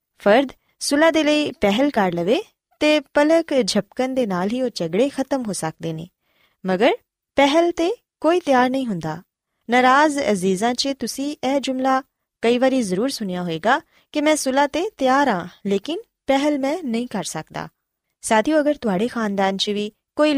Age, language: 20-39, Punjabi